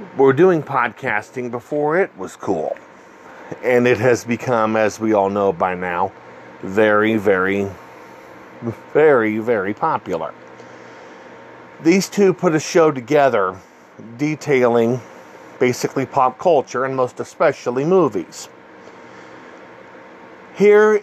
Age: 40-59